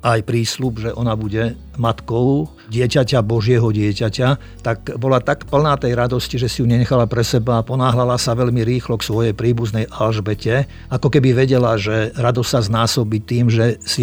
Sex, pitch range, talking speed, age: male, 110-125 Hz, 170 wpm, 50-69